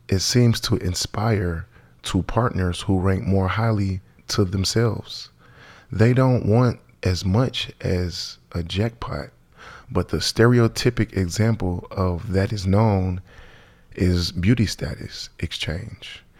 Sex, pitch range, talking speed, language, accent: male, 90-110 Hz, 115 wpm, English, American